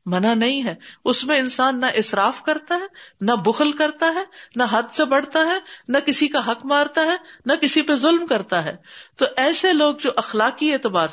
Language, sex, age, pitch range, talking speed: Urdu, female, 50-69, 185-270 Hz, 200 wpm